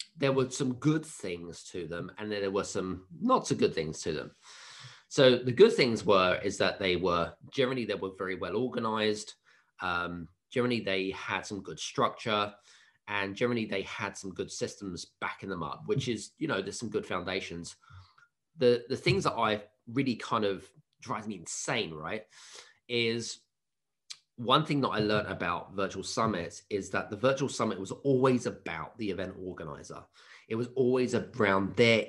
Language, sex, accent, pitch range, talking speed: English, male, British, 95-125 Hz, 180 wpm